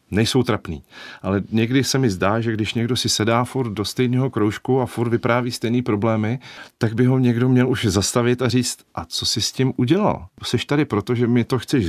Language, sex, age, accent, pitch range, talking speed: Czech, male, 40-59, native, 95-120 Hz, 215 wpm